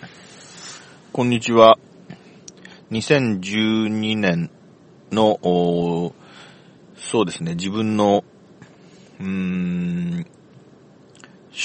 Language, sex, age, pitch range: Japanese, male, 40-59, 90-140 Hz